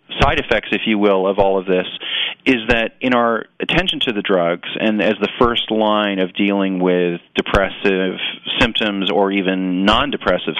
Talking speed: 170 wpm